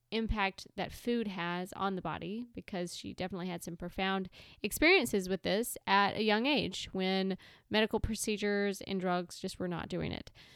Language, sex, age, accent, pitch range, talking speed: English, female, 20-39, American, 185-220 Hz, 170 wpm